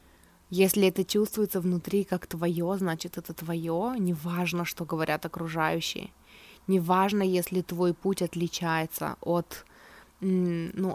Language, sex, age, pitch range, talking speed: Russian, female, 20-39, 170-190 Hz, 110 wpm